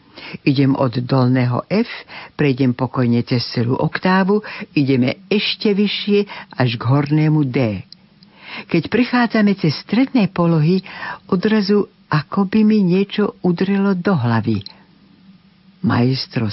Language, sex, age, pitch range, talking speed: Slovak, female, 60-79, 125-185 Hz, 110 wpm